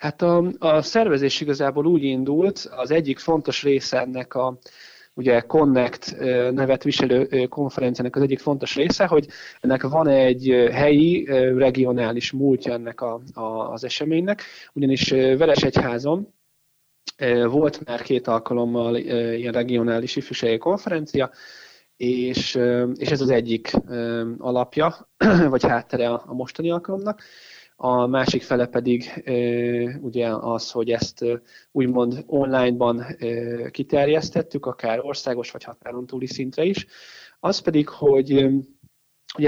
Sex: male